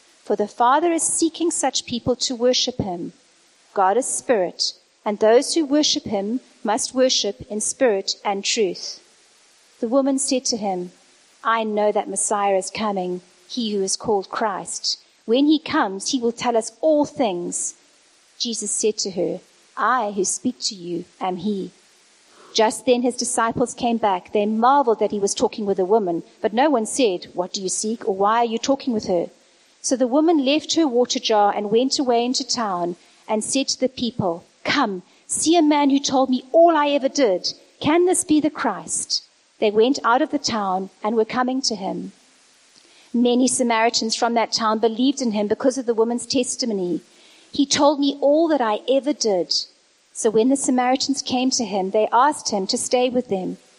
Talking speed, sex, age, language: 190 wpm, female, 40-59, English